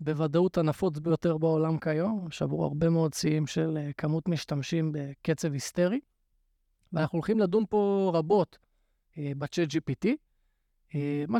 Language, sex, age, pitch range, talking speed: Hebrew, male, 20-39, 150-190 Hz, 125 wpm